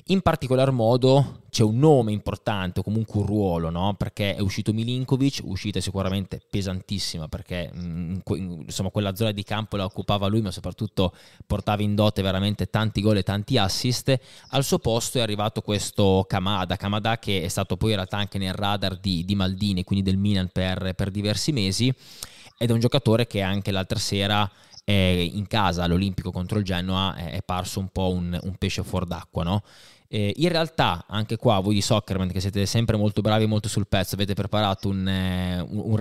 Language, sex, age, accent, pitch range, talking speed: Italian, male, 20-39, native, 95-115 Hz, 185 wpm